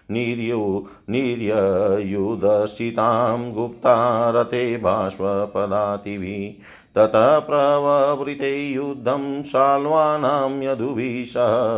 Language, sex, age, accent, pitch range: Hindi, male, 50-69, native, 105-125 Hz